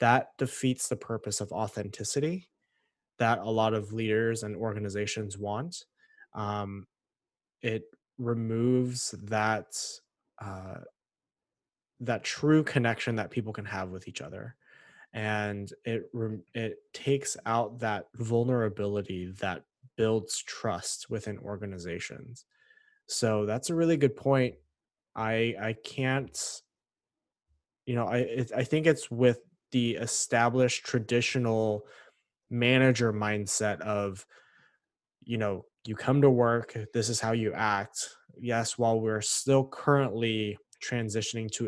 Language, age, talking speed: English, 20-39, 120 wpm